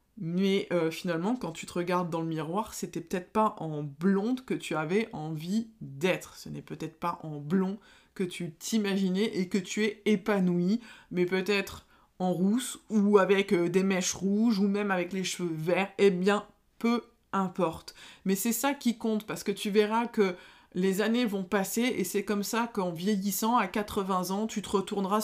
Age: 20-39